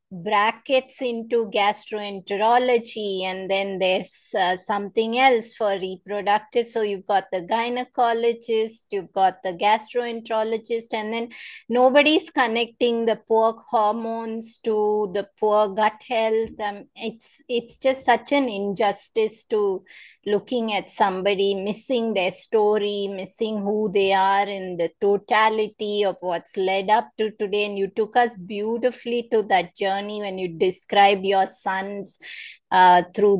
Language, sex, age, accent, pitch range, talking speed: English, female, 20-39, Indian, 195-235 Hz, 135 wpm